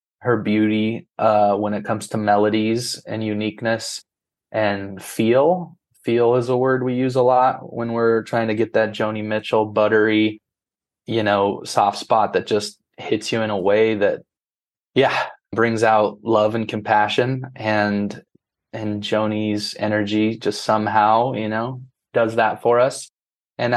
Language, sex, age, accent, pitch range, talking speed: English, male, 20-39, American, 105-120 Hz, 150 wpm